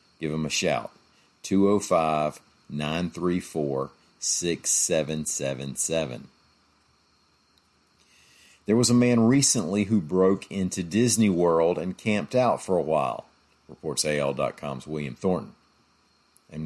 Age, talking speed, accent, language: 50-69, 95 wpm, American, English